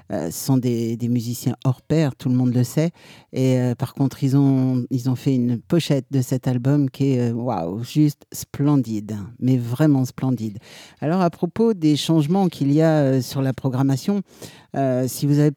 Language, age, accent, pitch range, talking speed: French, 50-69, French, 130-160 Hz, 200 wpm